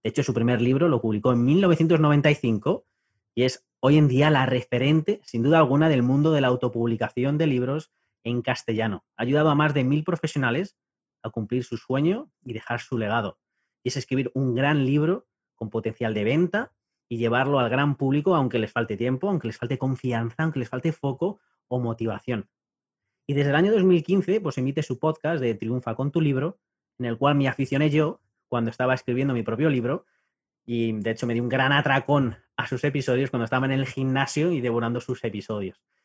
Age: 30-49